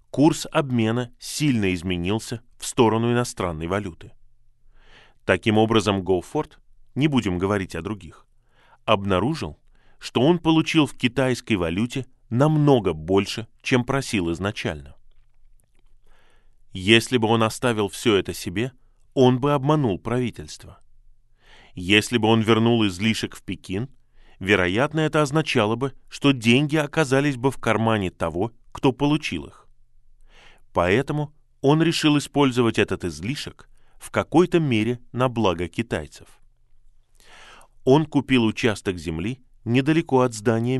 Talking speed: 115 wpm